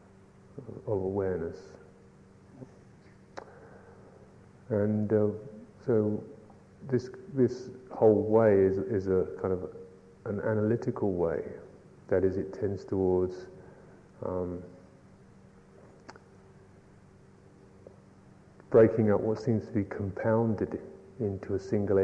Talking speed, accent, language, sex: 90 wpm, British, English, male